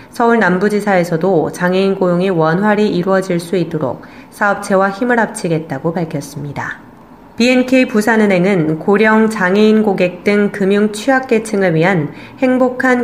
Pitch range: 175-215 Hz